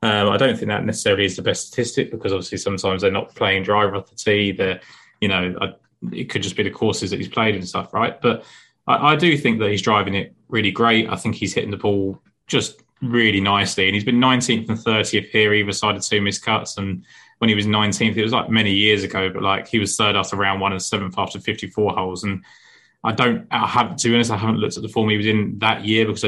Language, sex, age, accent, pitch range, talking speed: English, male, 20-39, British, 100-110 Hz, 260 wpm